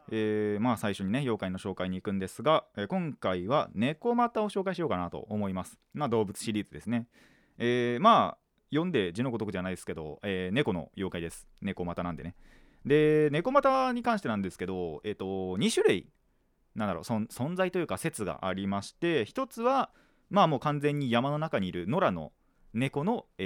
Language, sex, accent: Japanese, male, native